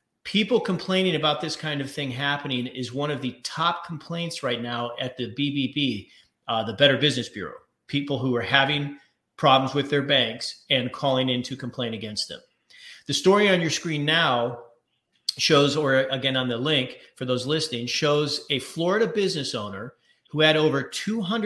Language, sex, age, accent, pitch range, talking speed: English, male, 40-59, American, 130-170 Hz, 175 wpm